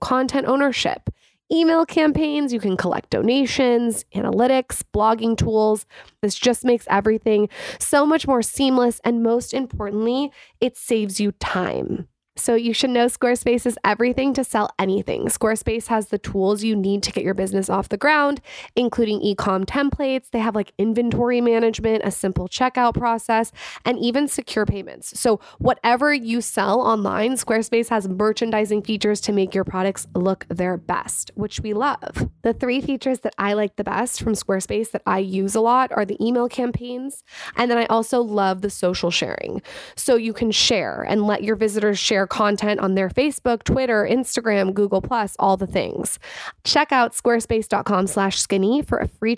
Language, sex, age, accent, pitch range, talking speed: English, female, 20-39, American, 205-245 Hz, 165 wpm